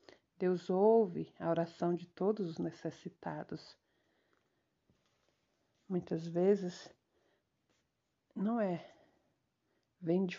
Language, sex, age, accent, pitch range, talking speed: Portuguese, female, 50-69, Brazilian, 165-185 Hz, 80 wpm